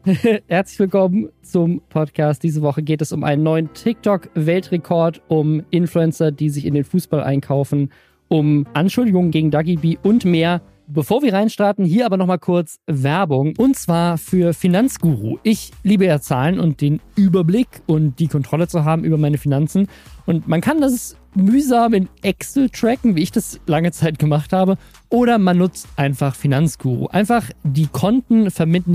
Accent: German